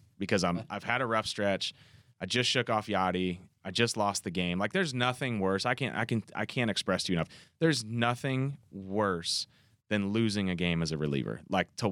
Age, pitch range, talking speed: 30-49, 90-115 Hz, 215 wpm